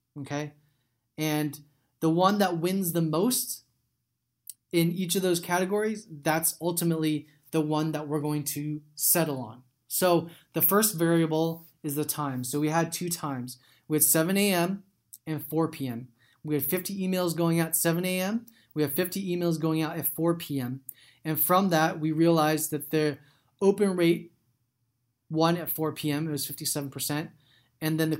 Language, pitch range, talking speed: English, 145-175 Hz, 170 wpm